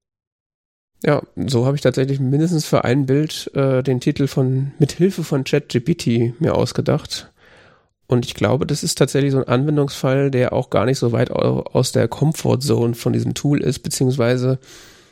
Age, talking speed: 40-59, 165 wpm